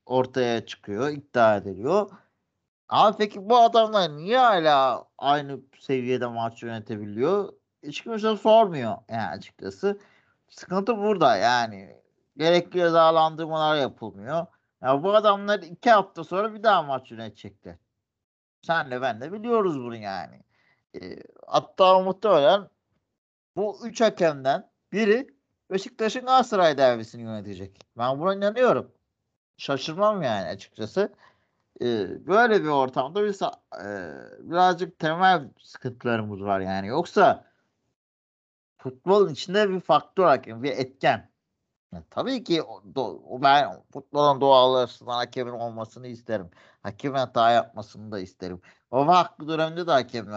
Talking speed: 115 wpm